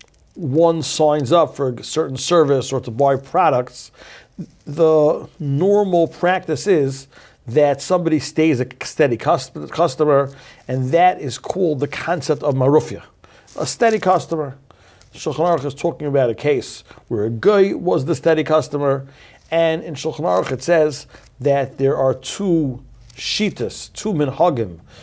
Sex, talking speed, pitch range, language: male, 140 wpm, 130-160 Hz, English